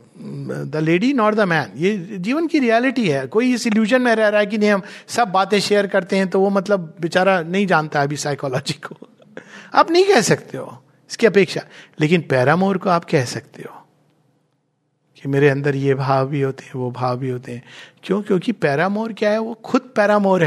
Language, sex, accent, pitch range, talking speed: Hindi, male, native, 150-225 Hz, 180 wpm